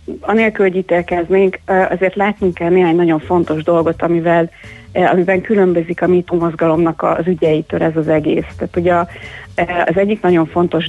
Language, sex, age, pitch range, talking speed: Hungarian, female, 30-49, 160-180 Hz, 145 wpm